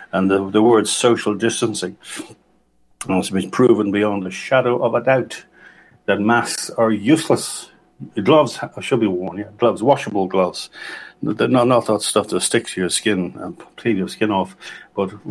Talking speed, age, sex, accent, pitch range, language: 165 wpm, 60-79, male, Irish, 95-110 Hz, English